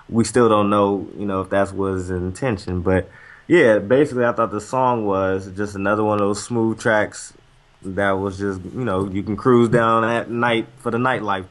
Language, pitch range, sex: English, 105-150 Hz, male